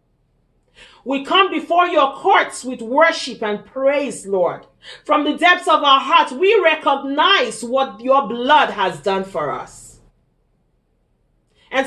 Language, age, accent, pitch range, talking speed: English, 40-59, Nigerian, 245-350 Hz, 130 wpm